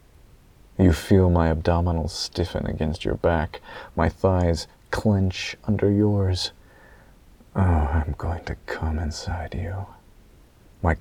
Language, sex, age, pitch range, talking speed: English, male, 30-49, 80-95 Hz, 115 wpm